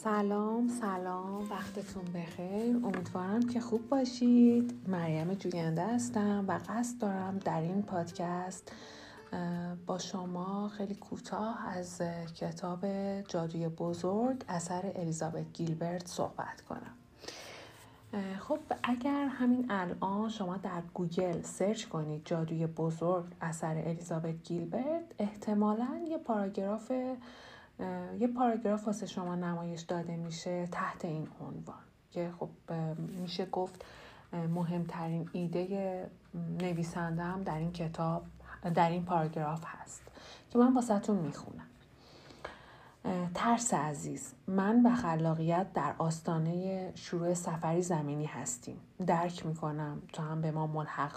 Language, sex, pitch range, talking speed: Persian, female, 170-210 Hz, 110 wpm